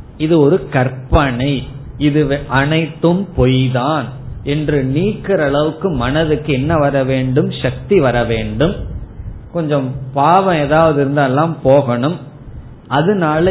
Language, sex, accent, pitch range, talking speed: Tamil, male, native, 130-170 Hz, 100 wpm